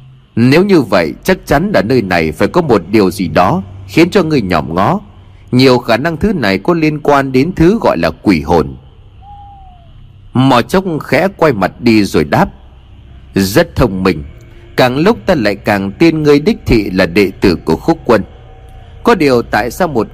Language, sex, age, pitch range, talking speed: Vietnamese, male, 30-49, 95-145 Hz, 190 wpm